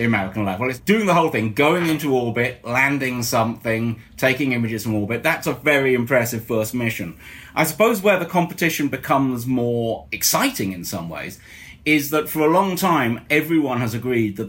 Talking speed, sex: 180 wpm, male